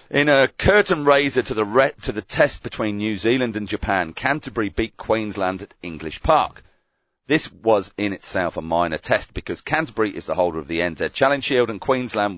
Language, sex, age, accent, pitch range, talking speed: English, male, 40-59, British, 90-125 Hz, 195 wpm